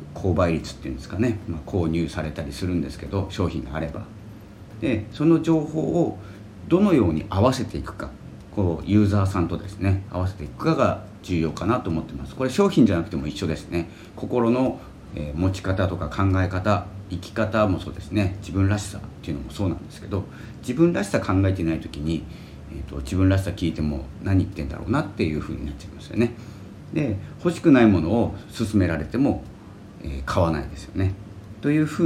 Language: Japanese